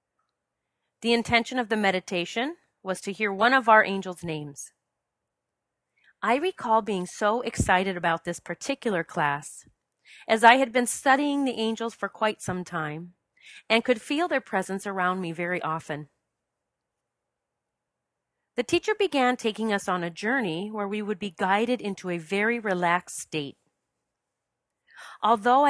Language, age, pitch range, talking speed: English, 30-49, 180-235 Hz, 140 wpm